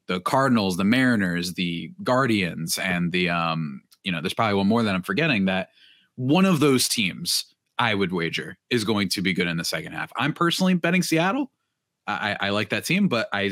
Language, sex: English, male